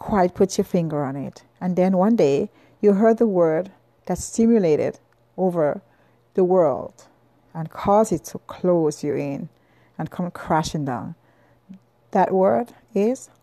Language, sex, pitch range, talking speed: English, female, 175-225 Hz, 150 wpm